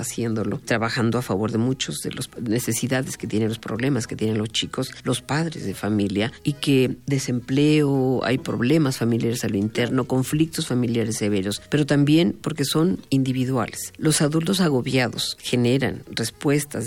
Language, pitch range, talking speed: Spanish, 115-150 Hz, 155 wpm